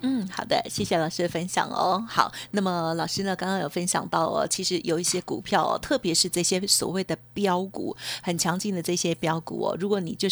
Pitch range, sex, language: 160-200 Hz, female, Chinese